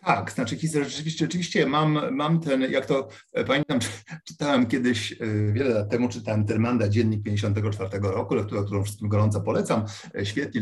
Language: English